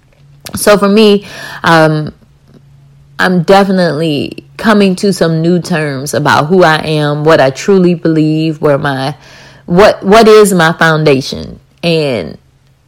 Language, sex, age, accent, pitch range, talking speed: English, female, 20-39, American, 150-200 Hz, 125 wpm